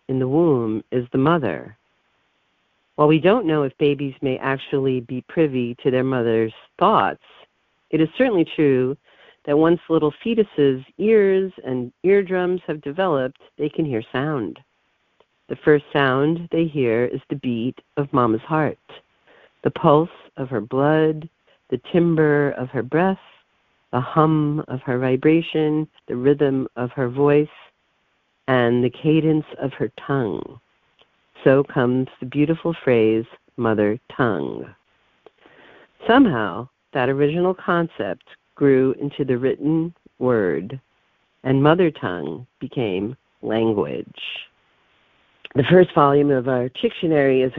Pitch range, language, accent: 130-165 Hz, English, American